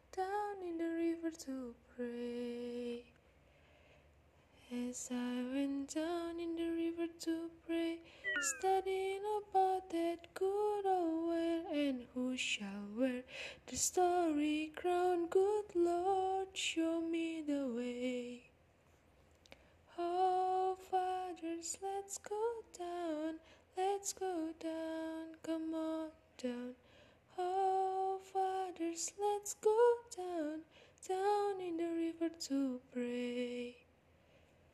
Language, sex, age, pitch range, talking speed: Indonesian, female, 10-29, 280-370 Hz, 95 wpm